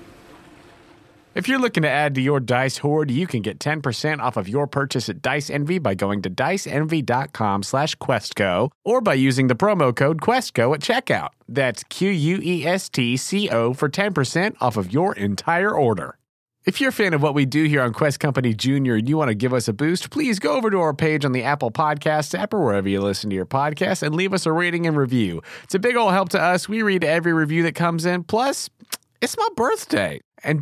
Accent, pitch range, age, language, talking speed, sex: American, 130-185 Hz, 30-49, English, 215 wpm, male